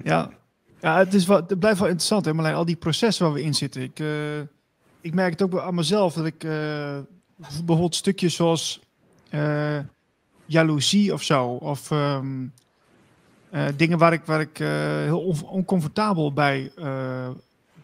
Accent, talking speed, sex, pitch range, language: Dutch, 170 wpm, male, 145-185 Hz, Dutch